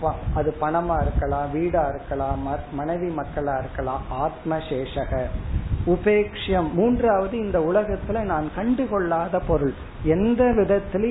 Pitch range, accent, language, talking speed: 140-185 Hz, native, Tamil, 95 wpm